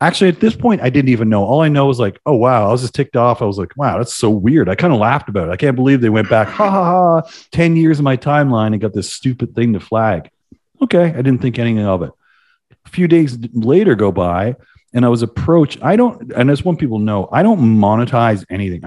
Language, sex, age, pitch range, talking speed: English, male, 40-59, 95-140 Hz, 260 wpm